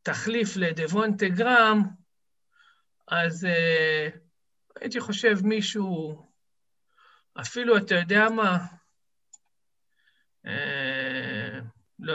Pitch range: 175-220 Hz